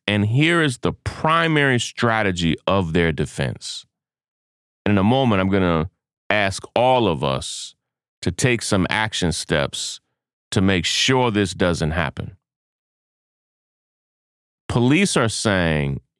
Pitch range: 95-130 Hz